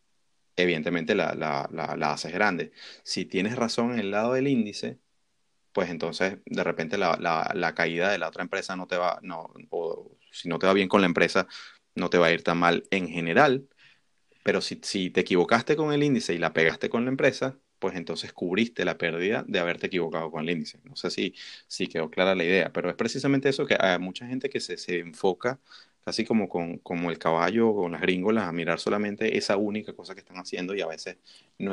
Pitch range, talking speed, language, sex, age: 90-115 Hz, 215 wpm, Spanish, male, 30-49